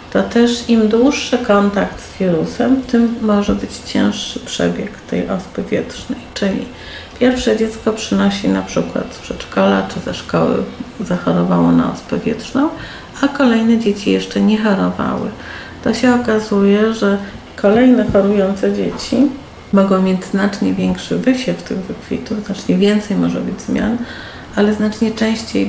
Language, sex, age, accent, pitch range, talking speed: Polish, female, 50-69, native, 185-225 Hz, 135 wpm